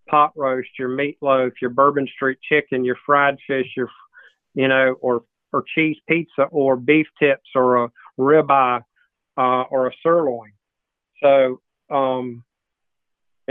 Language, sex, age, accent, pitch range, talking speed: English, male, 50-69, American, 130-150 Hz, 135 wpm